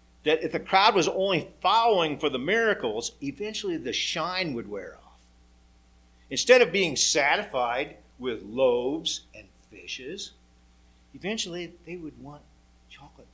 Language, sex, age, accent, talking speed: English, male, 50-69, American, 130 wpm